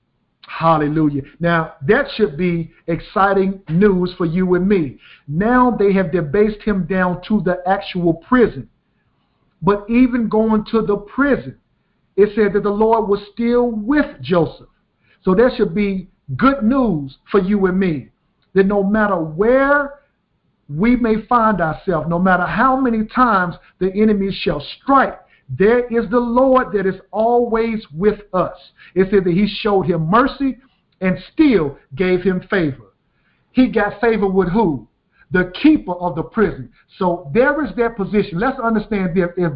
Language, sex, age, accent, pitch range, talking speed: English, male, 50-69, American, 175-220 Hz, 155 wpm